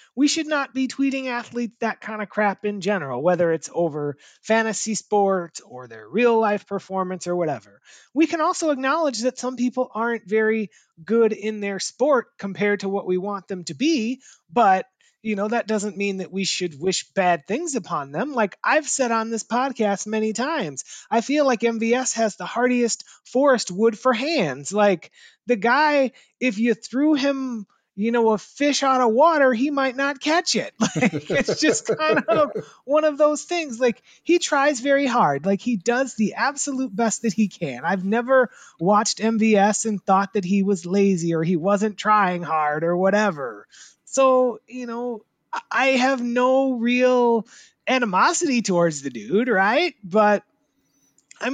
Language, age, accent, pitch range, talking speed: English, 30-49, American, 195-260 Hz, 175 wpm